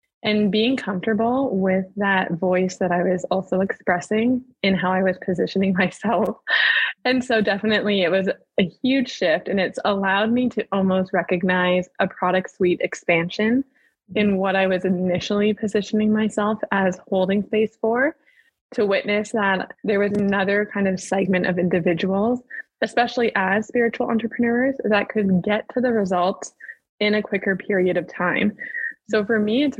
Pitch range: 185-215 Hz